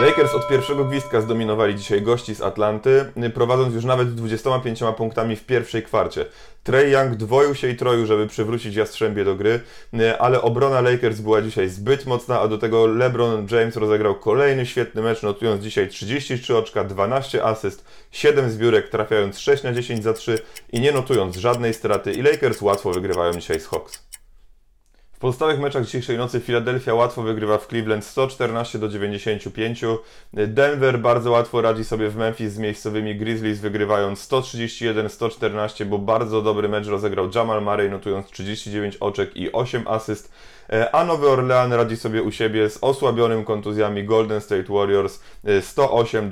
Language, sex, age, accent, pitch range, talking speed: Polish, male, 30-49, native, 105-125 Hz, 160 wpm